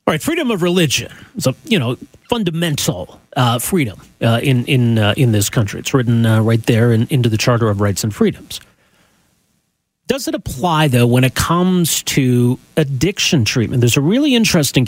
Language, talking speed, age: English, 170 wpm, 40-59